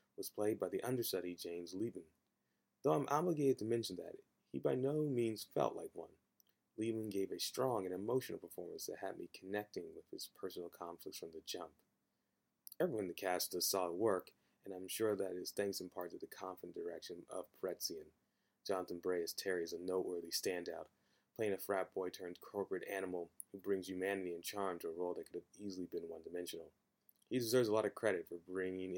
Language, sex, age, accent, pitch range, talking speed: English, male, 30-49, American, 90-120 Hz, 200 wpm